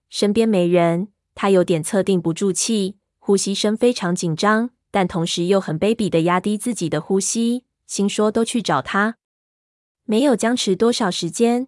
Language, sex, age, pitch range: Chinese, female, 20-39, 175-215 Hz